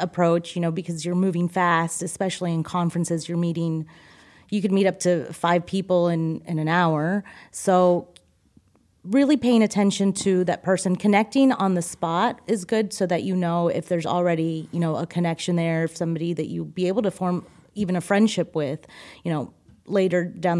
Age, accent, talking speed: 30-49, American, 185 wpm